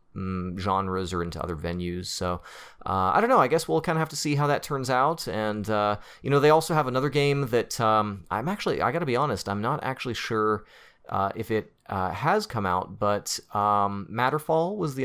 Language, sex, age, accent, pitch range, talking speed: English, male, 30-49, American, 100-140 Hz, 225 wpm